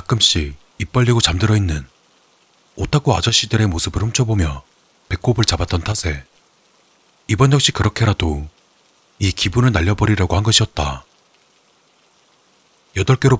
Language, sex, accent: Korean, male, native